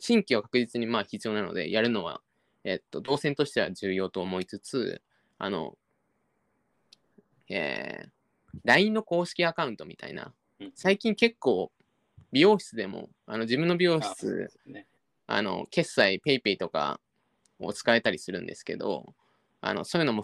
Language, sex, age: Japanese, male, 20-39